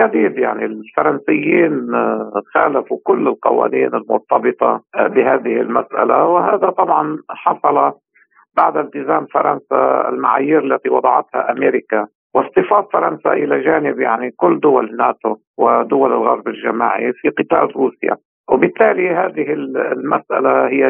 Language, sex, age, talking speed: Arabic, male, 50-69, 105 wpm